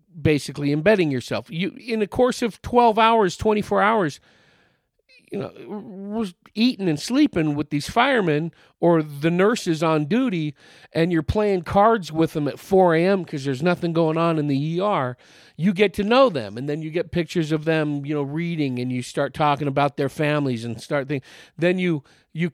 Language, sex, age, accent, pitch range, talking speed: English, male, 40-59, American, 125-165 Hz, 190 wpm